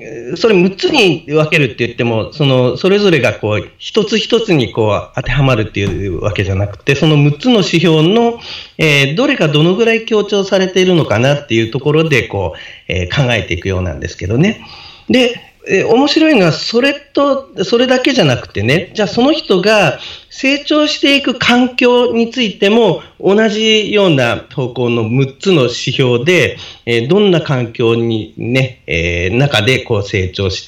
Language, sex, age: Japanese, male, 40-59